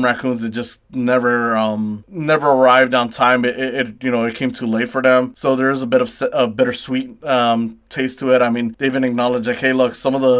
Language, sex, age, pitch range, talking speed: English, male, 20-39, 120-135 Hz, 250 wpm